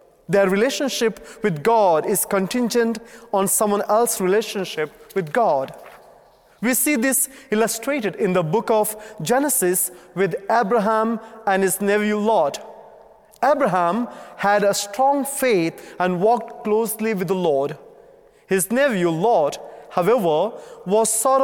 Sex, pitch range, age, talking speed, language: male, 190-235 Hz, 30-49, 125 wpm, English